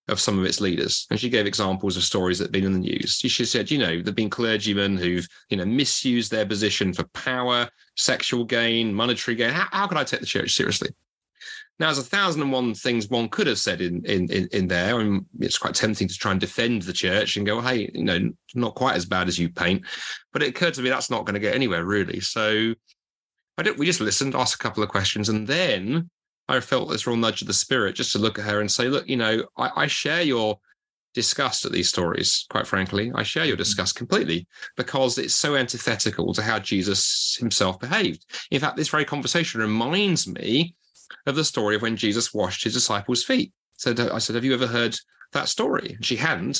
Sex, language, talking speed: male, English, 230 wpm